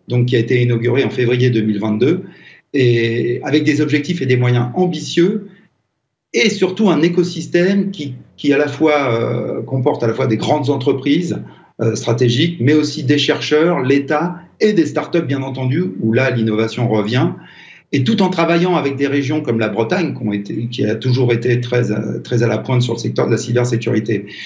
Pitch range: 120-160 Hz